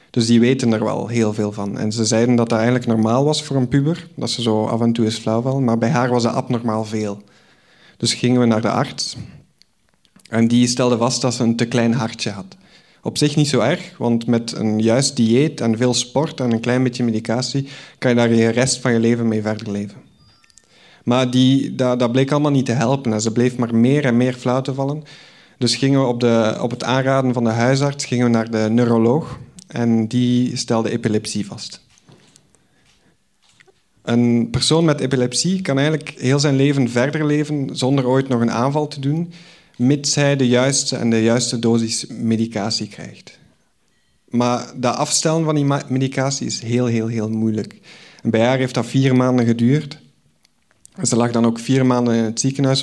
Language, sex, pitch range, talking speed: Dutch, male, 115-135 Hz, 200 wpm